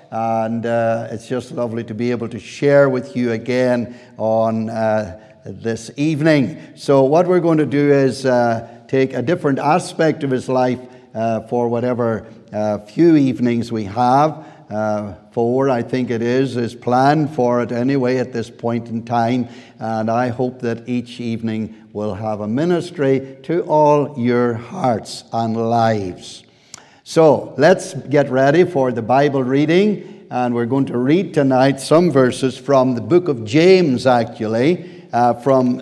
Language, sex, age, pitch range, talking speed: English, male, 60-79, 115-140 Hz, 160 wpm